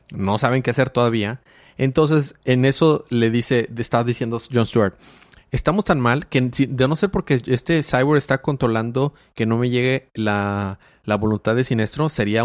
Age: 30-49